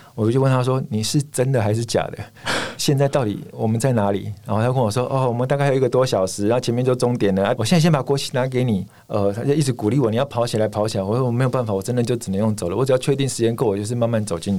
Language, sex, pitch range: Chinese, male, 105-130 Hz